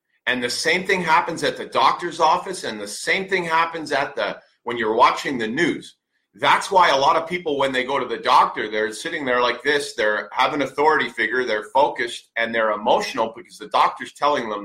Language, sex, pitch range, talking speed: English, male, 130-185 Hz, 215 wpm